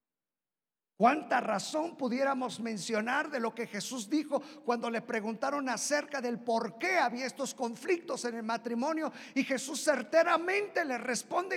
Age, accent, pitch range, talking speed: 50-69, Mexican, 160-230 Hz, 140 wpm